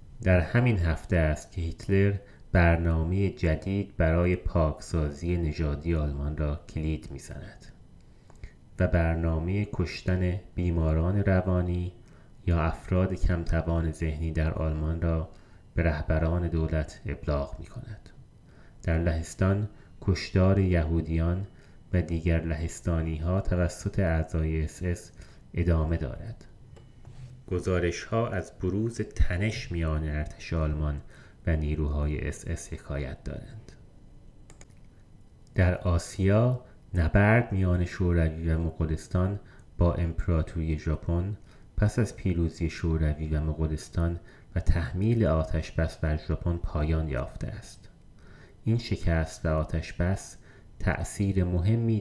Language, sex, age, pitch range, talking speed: Persian, male, 30-49, 80-95 Hz, 100 wpm